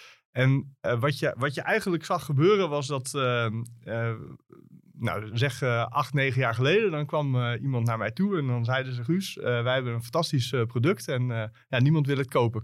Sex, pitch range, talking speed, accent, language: male, 120-160 Hz, 220 wpm, Dutch, Dutch